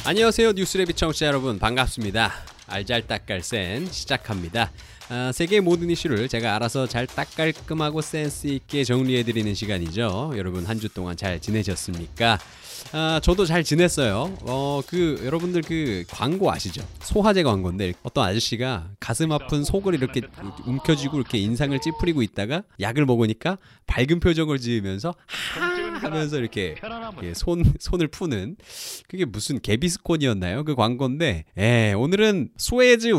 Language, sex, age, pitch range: Korean, male, 20-39, 110-165 Hz